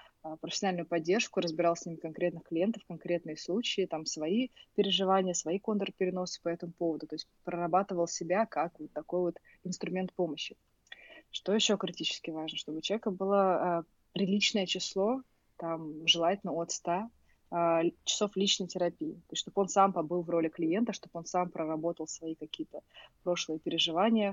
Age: 20-39